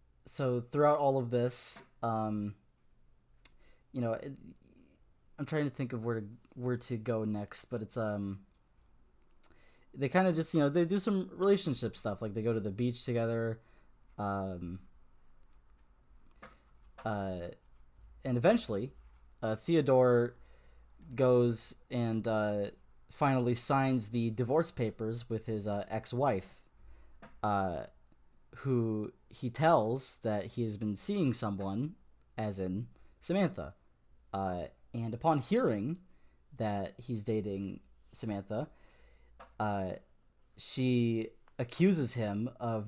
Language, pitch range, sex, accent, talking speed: English, 100-125 Hz, male, American, 120 wpm